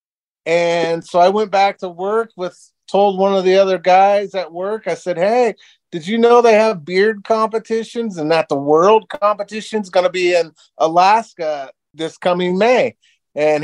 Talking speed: 180 wpm